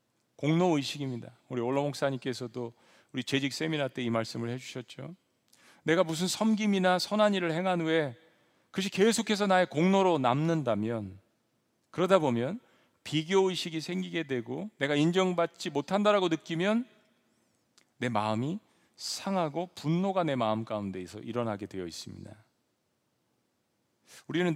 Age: 40-59